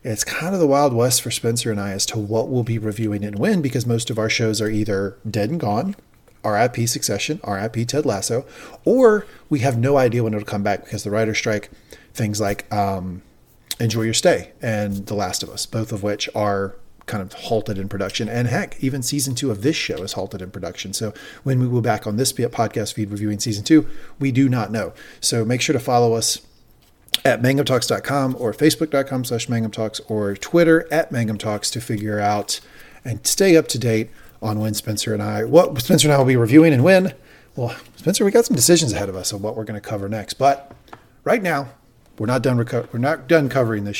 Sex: male